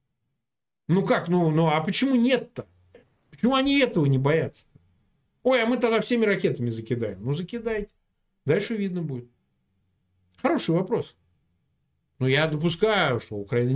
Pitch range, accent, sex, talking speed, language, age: 115-170 Hz, native, male, 135 wpm, Russian, 50-69